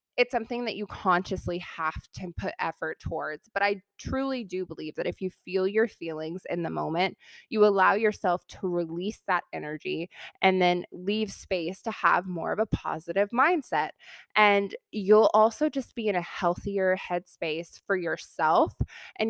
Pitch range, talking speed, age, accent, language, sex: 175-215 Hz, 170 wpm, 20-39, American, English, female